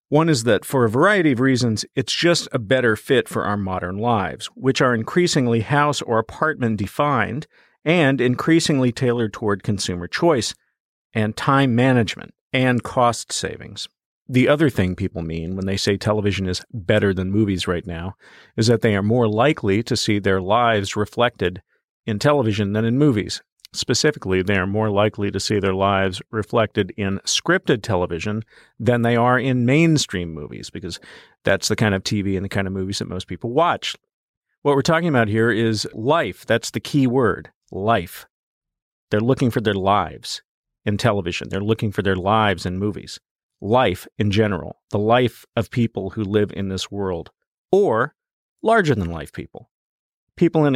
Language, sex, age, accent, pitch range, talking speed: English, male, 50-69, American, 100-130 Hz, 170 wpm